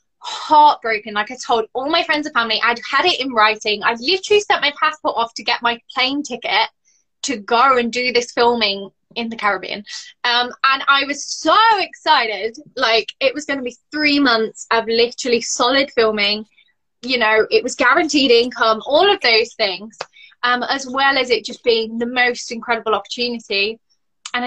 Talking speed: 180 wpm